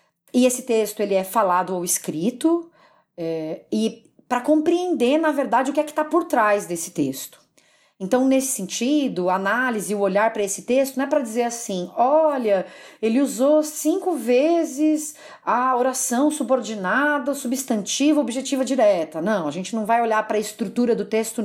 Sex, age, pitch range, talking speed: female, 40-59, 200-275 Hz, 165 wpm